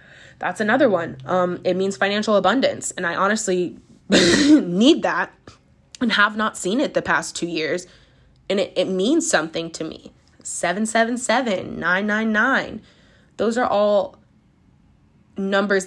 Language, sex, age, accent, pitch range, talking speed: English, female, 20-39, American, 180-220 Hz, 130 wpm